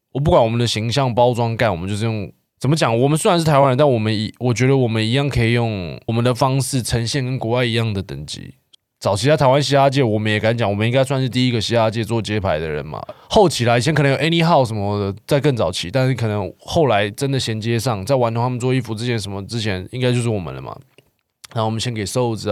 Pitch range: 110-135 Hz